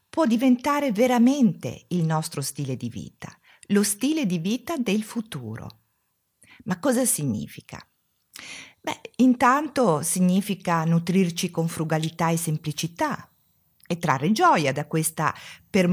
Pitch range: 150-235 Hz